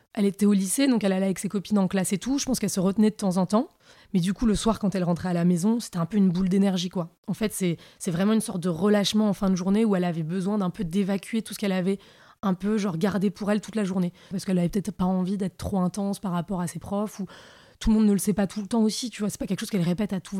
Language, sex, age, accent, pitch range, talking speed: French, female, 20-39, French, 180-210 Hz, 325 wpm